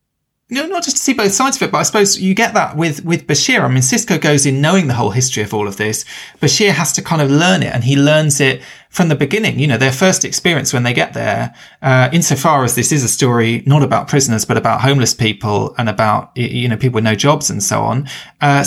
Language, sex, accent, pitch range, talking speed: English, male, British, 115-155 Hz, 265 wpm